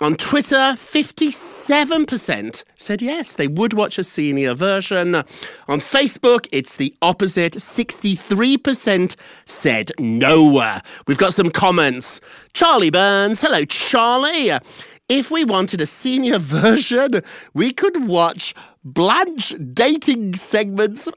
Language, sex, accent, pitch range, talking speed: English, male, British, 150-245 Hz, 110 wpm